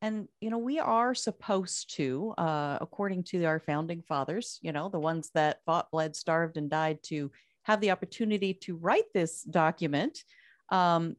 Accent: American